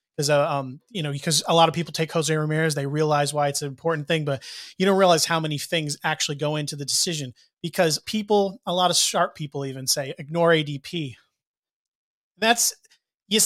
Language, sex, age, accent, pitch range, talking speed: English, male, 30-49, American, 150-185 Hz, 190 wpm